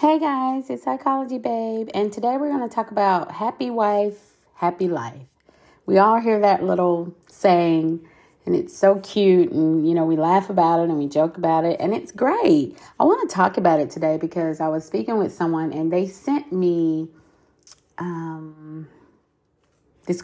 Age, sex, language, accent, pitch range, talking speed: 30-49, female, English, American, 155-190 Hz, 180 wpm